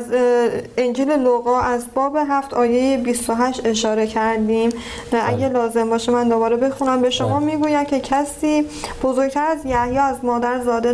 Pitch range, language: 230-265 Hz, Persian